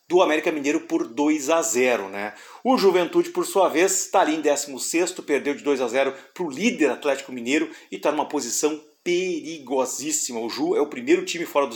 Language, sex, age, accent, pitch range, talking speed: Portuguese, male, 40-59, Brazilian, 145-205 Hz, 210 wpm